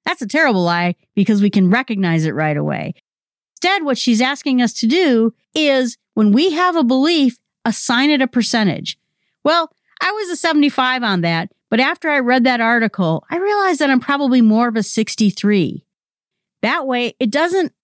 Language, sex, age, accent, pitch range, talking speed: English, female, 50-69, American, 195-275 Hz, 180 wpm